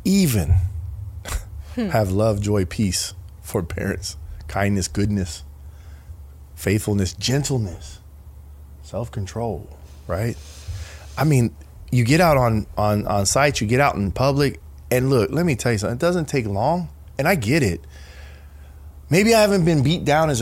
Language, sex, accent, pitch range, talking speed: English, male, American, 80-125 Hz, 145 wpm